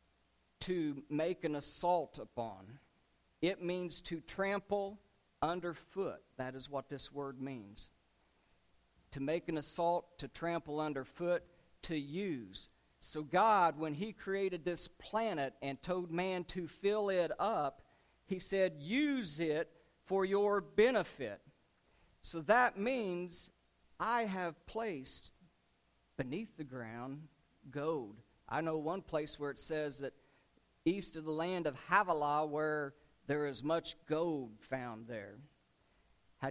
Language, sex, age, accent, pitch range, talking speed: English, male, 50-69, American, 140-175 Hz, 130 wpm